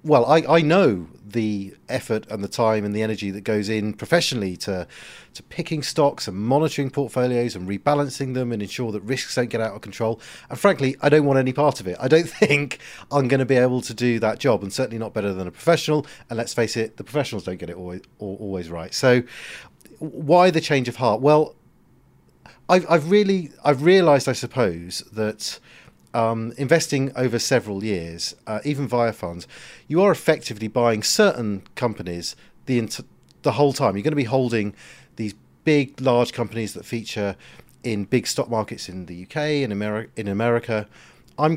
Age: 40-59